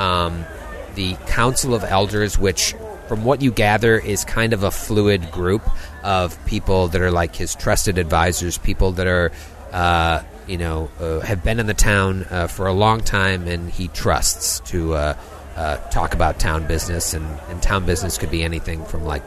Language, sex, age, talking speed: English, male, 30-49, 185 wpm